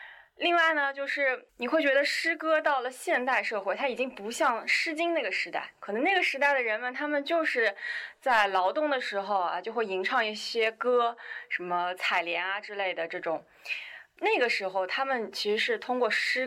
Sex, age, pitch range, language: female, 20-39, 195-285 Hz, Chinese